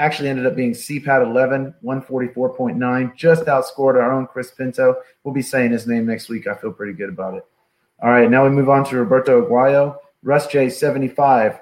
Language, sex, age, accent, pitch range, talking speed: English, male, 30-49, American, 125-150 Hz, 195 wpm